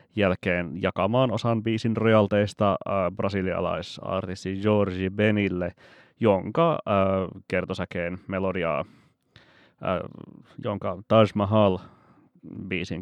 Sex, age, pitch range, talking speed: male, 30-49, 95-110 Hz, 80 wpm